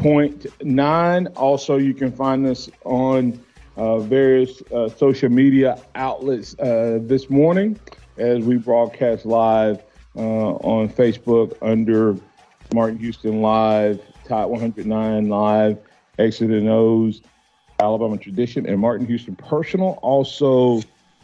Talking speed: 125 wpm